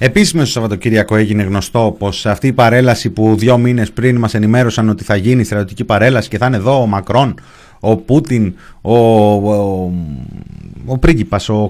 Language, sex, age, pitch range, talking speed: Greek, male, 30-49, 90-135 Hz, 170 wpm